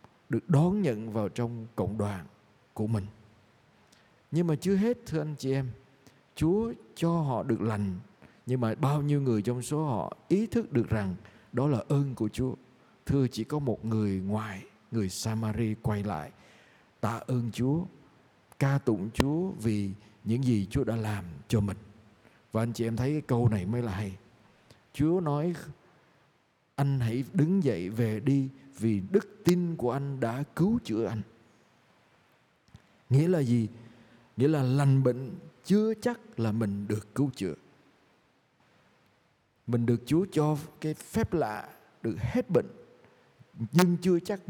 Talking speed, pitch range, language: 160 wpm, 110-150 Hz, Vietnamese